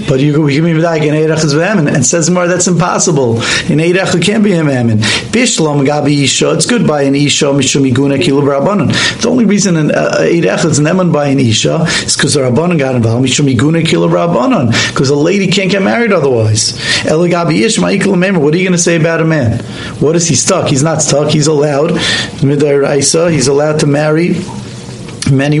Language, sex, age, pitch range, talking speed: English, male, 40-59, 140-180 Hz, 195 wpm